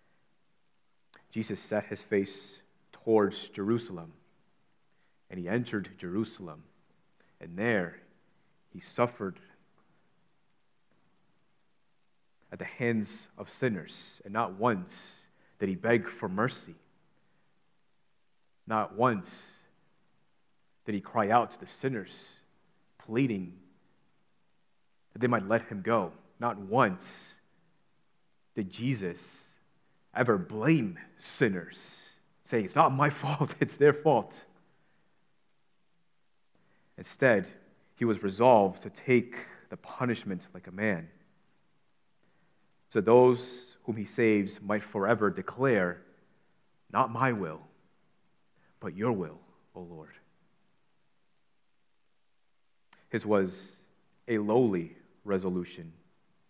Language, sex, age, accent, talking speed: English, male, 30-49, American, 95 wpm